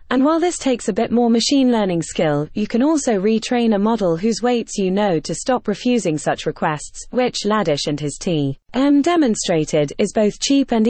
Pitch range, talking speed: 160-245 Hz, 195 wpm